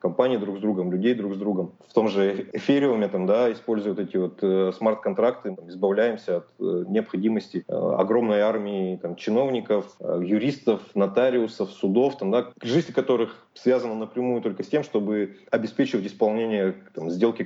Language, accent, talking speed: Russian, native, 145 wpm